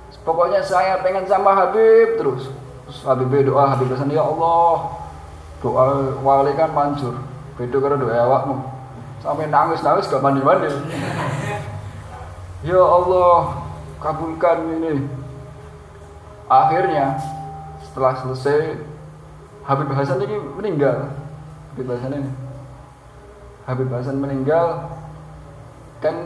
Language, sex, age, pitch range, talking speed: Indonesian, male, 20-39, 130-165 Hz, 90 wpm